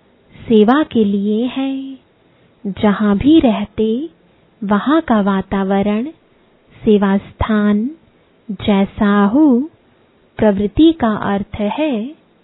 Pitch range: 205-260 Hz